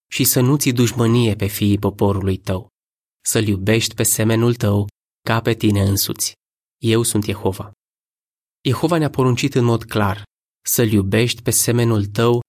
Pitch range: 105-125 Hz